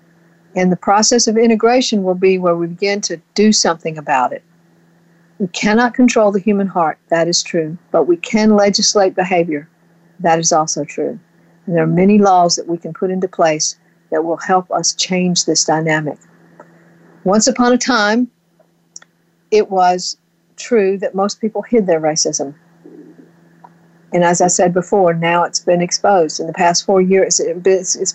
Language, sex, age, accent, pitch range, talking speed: English, female, 60-79, American, 170-205 Hz, 170 wpm